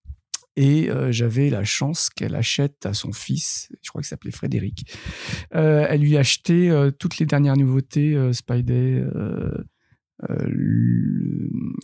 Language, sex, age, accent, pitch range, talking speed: French, male, 40-59, French, 125-155 Hz, 140 wpm